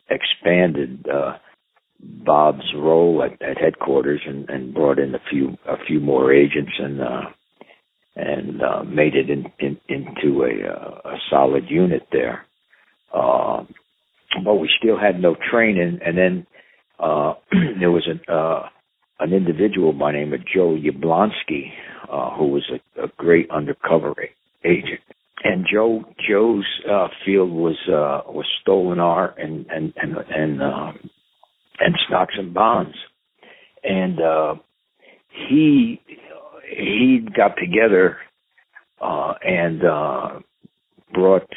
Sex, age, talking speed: male, 60-79, 130 wpm